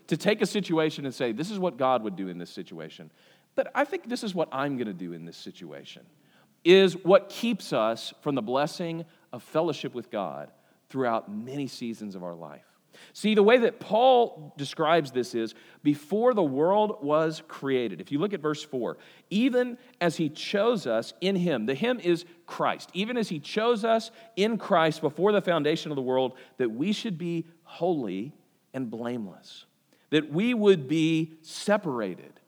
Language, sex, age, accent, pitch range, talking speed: English, male, 40-59, American, 130-200 Hz, 185 wpm